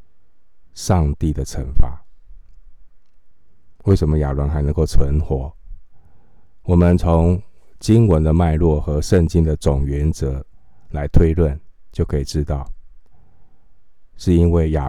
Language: Chinese